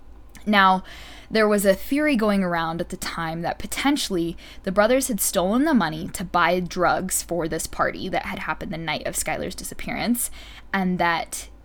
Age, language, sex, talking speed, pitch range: 10-29, English, female, 175 wpm, 170-210 Hz